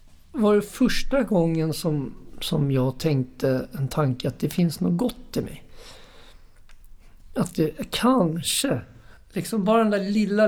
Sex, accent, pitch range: male, native, 135-195 Hz